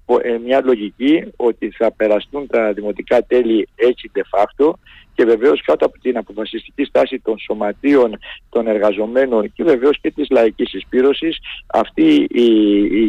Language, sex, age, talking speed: Greek, male, 60-79, 140 wpm